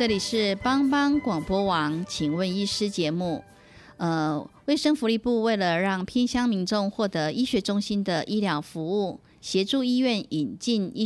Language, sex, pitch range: Chinese, female, 175-230 Hz